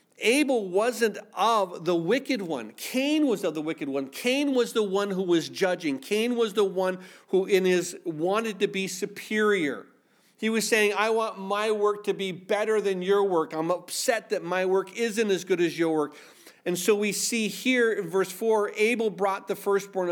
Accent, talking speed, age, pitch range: American, 195 wpm, 40-59, 175-210 Hz